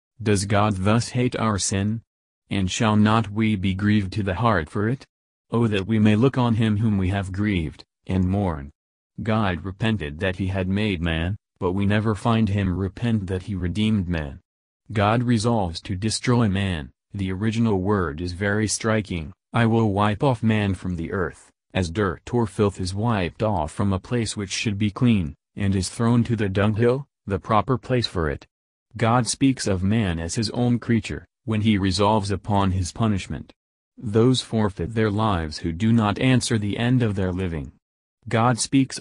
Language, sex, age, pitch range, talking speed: English, male, 40-59, 95-110 Hz, 185 wpm